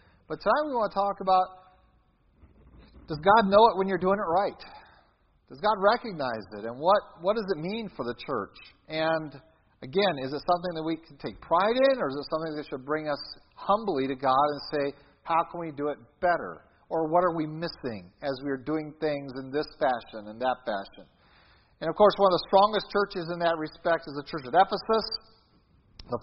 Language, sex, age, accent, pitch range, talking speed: English, male, 40-59, American, 150-200 Hz, 210 wpm